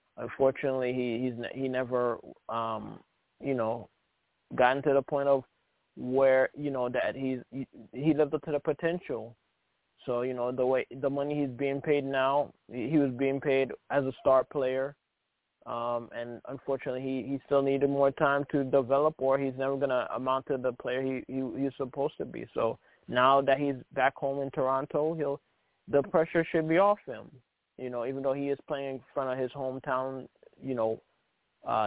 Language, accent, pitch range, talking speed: English, American, 125-140 Hz, 190 wpm